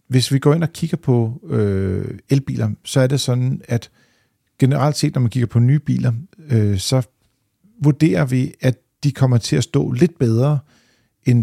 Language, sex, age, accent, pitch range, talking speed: Danish, male, 50-69, native, 110-135 Hz, 175 wpm